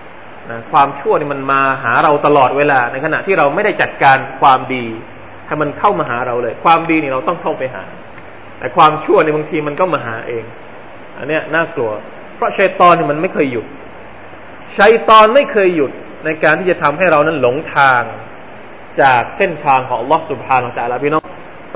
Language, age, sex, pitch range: Thai, 20-39, male, 150-215 Hz